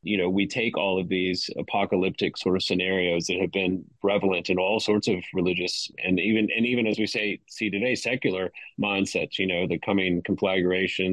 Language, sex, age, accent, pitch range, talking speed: English, male, 30-49, American, 95-105 Hz, 195 wpm